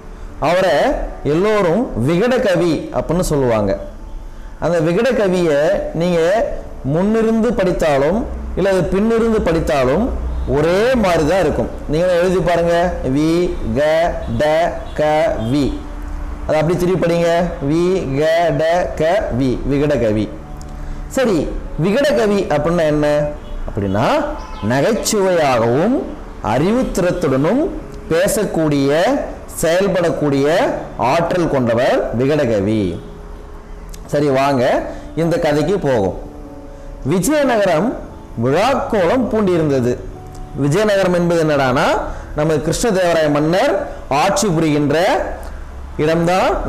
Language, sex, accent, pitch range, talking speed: Tamil, male, native, 120-185 Hz, 85 wpm